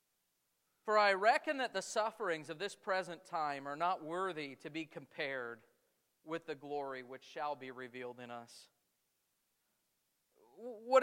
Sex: male